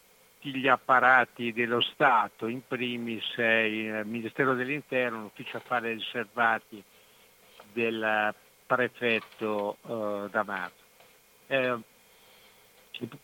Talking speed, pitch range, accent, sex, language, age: 80 wpm, 110-130 Hz, native, male, Italian, 60-79